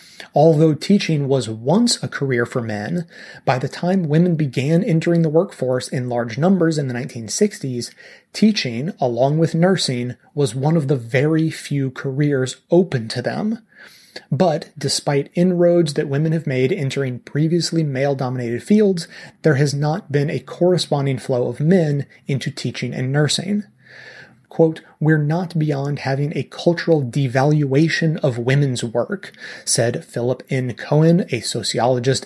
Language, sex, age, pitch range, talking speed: English, male, 30-49, 130-175 Hz, 145 wpm